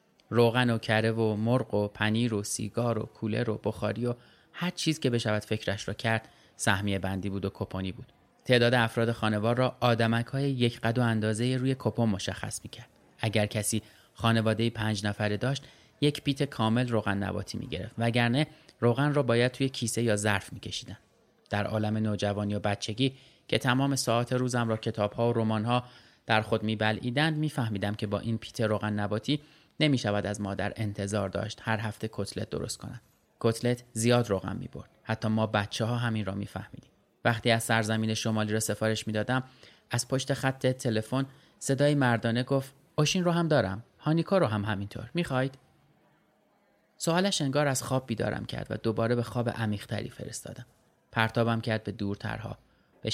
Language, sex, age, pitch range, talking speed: Persian, male, 30-49, 110-125 Hz, 170 wpm